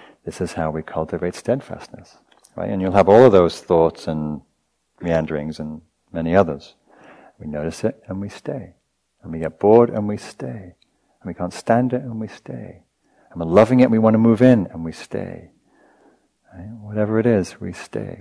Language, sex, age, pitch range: English, male, 50-69, 85-110 Hz